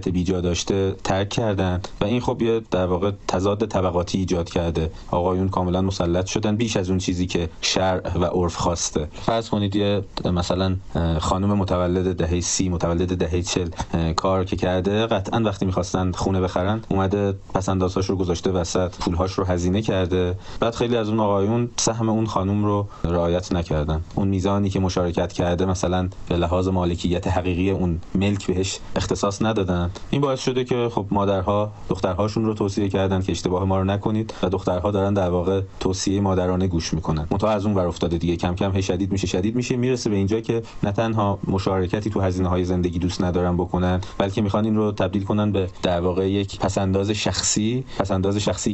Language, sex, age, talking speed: Persian, male, 30-49, 170 wpm